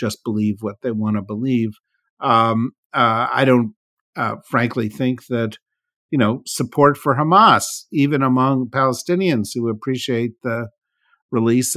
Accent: American